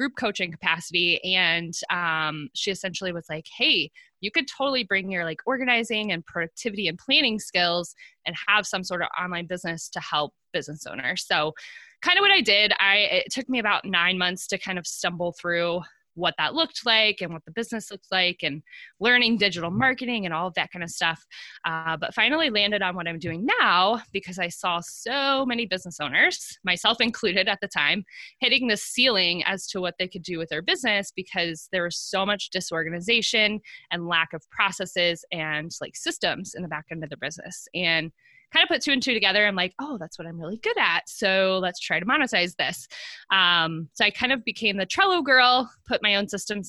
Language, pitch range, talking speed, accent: English, 170-230 Hz, 205 wpm, American